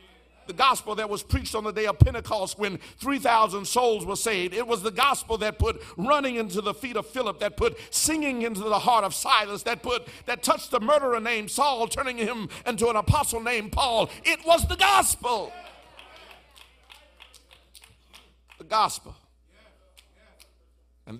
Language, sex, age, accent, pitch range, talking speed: English, male, 50-69, American, 150-220 Hz, 160 wpm